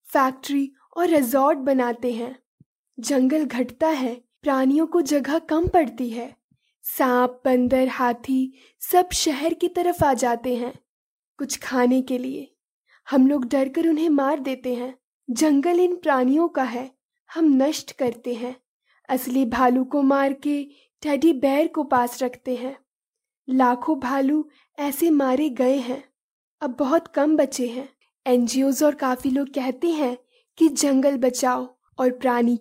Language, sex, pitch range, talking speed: Hindi, female, 255-300 Hz, 140 wpm